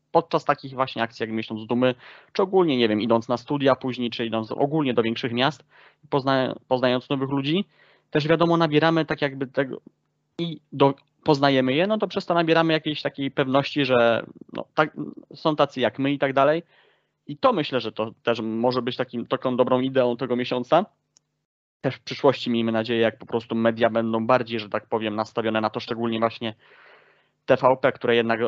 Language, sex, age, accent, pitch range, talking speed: Polish, male, 20-39, native, 115-145 Hz, 190 wpm